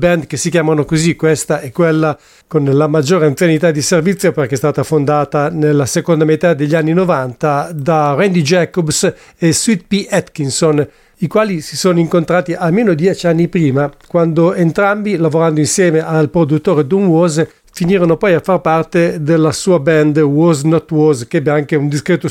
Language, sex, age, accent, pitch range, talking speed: English, male, 50-69, Italian, 150-175 Hz, 170 wpm